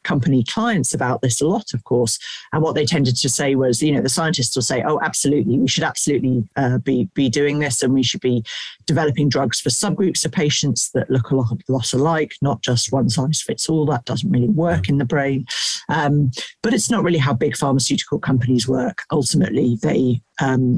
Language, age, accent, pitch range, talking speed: English, 40-59, British, 130-155 Hz, 210 wpm